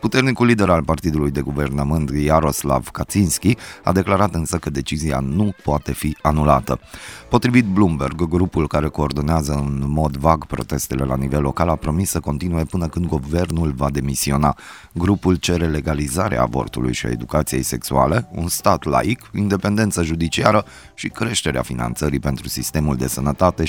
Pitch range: 70-90 Hz